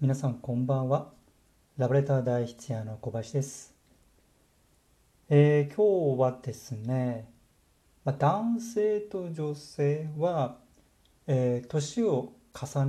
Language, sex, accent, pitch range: Japanese, male, native, 120-155 Hz